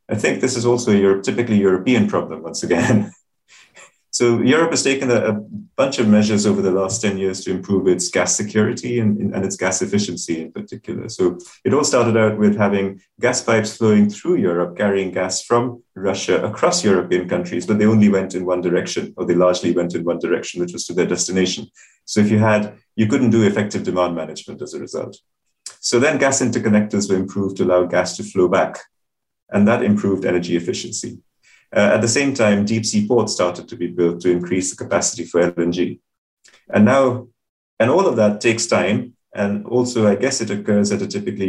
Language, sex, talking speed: English, male, 200 wpm